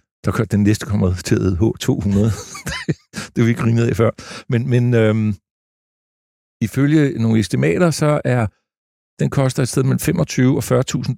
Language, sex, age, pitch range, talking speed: Danish, male, 60-79, 105-135 Hz, 165 wpm